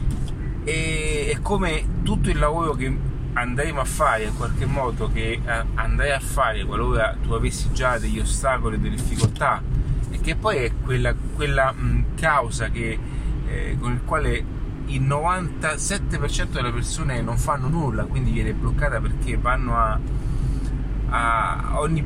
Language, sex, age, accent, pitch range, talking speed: Italian, male, 30-49, native, 115-135 Hz, 140 wpm